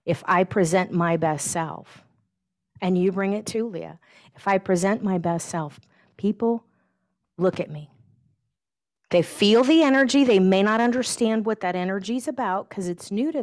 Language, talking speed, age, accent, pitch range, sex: English, 175 wpm, 40-59, American, 160-215 Hz, female